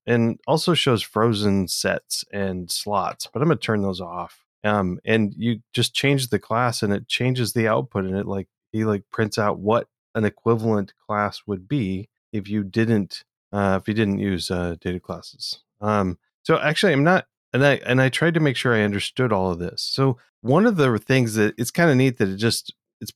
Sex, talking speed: male, 205 wpm